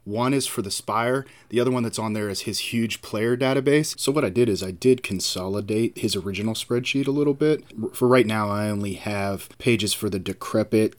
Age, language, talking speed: 30-49, English, 220 wpm